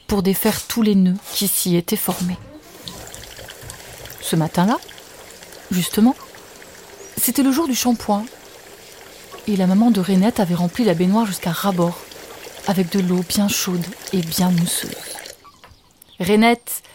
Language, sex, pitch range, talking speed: French, female, 190-275 Hz, 130 wpm